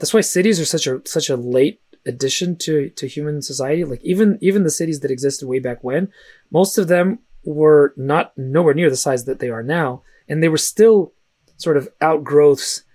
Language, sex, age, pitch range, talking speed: English, male, 20-39, 130-165 Hz, 205 wpm